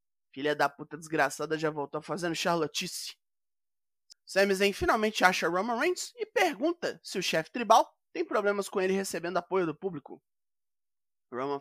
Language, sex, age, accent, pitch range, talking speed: Portuguese, male, 20-39, Brazilian, 155-215 Hz, 160 wpm